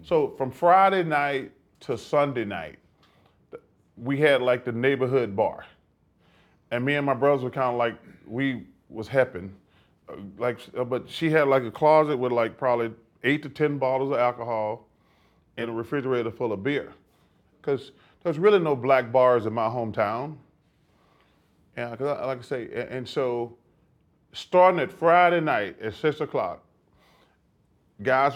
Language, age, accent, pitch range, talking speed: English, 30-49, American, 120-155 Hz, 150 wpm